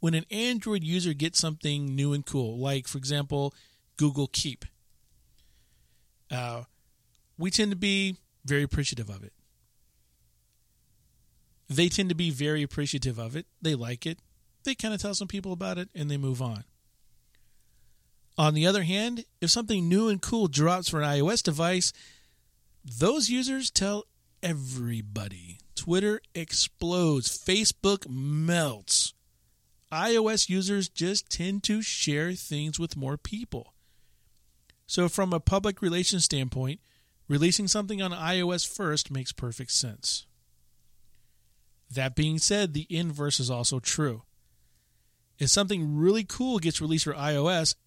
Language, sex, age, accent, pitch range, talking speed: English, male, 40-59, American, 135-195 Hz, 135 wpm